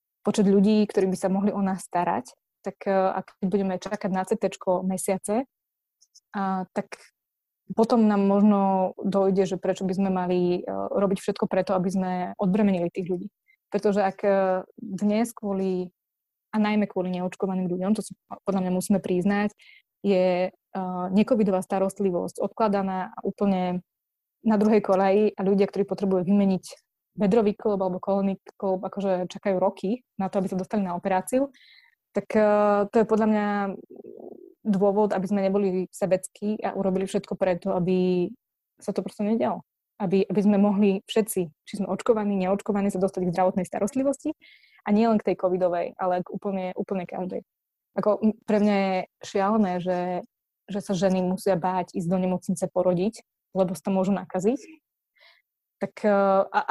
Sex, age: female, 20-39